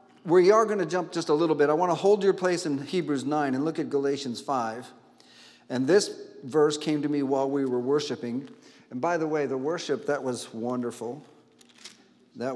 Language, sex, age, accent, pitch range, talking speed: English, male, 50-69, American, 150-215 Hz, 205 wpm